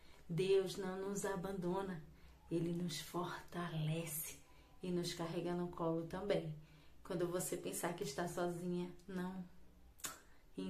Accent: Brazilian